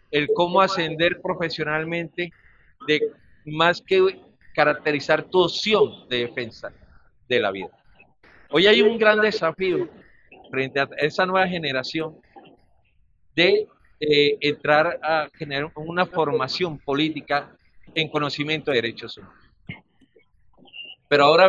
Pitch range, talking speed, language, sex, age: 140-185 Hz, 110 wpm, Spanish, male, 50-69